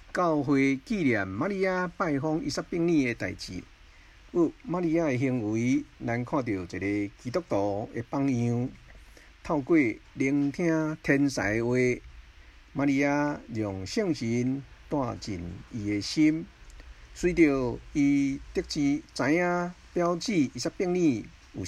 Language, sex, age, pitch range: Chinese, male, 50-69, 100-145 Hz